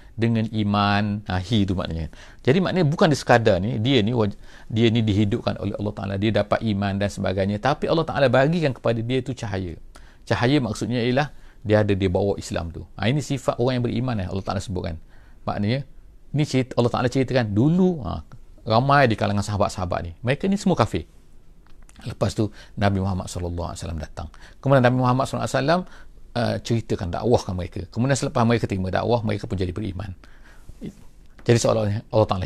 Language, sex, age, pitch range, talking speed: English, male, 40-59, 100-130 Hz, 175 wpm